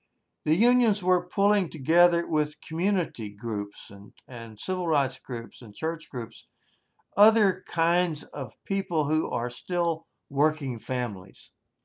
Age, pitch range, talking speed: 60-79, 120-180 Hz, 125 wpm